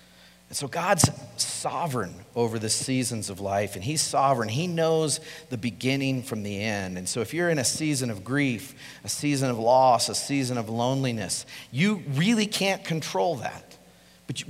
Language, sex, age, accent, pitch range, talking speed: English, male, 40-59, American, 100-150 Hz, 175 wpm